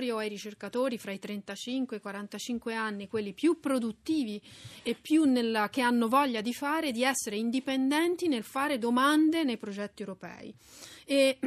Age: 30-49